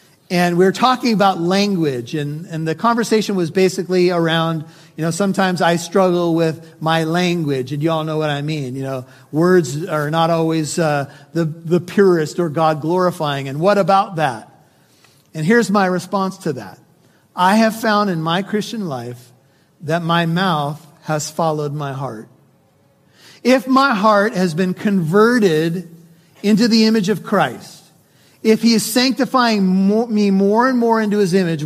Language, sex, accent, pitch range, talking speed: English, male, American, 160-205 Hz, 165 wpm